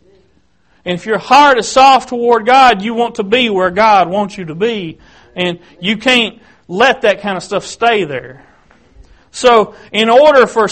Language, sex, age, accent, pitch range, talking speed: English, male, 40-59, American, 175-230 Hz, 180 wpm